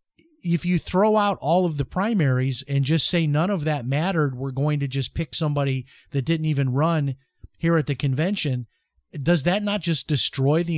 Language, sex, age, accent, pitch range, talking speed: English, male, 30-49, American, 130-160 Hz, 195 wpm